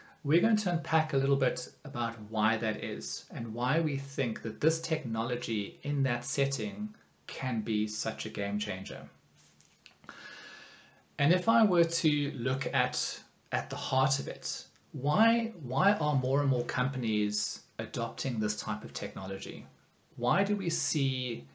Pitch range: 110-145 Hz